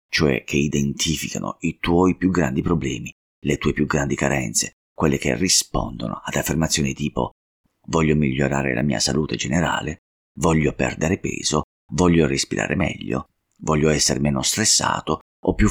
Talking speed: 140 wpm